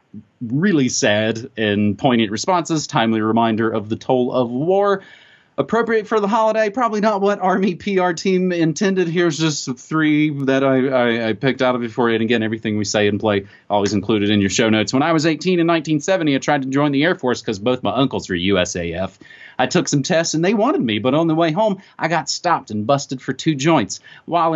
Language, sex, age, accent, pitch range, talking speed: English, male, 30-49, American, 110-175 Hz, 215 wpm